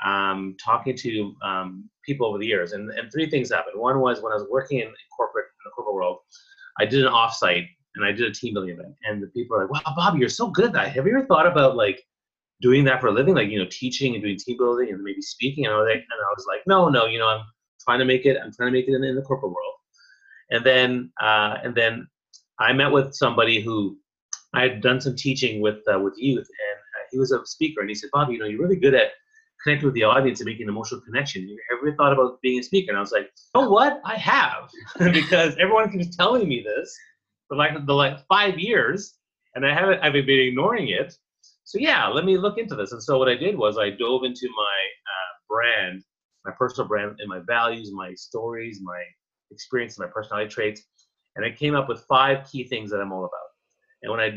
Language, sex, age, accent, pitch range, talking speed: English, male, 30-49, American, 110-155 Hz, 240 wpm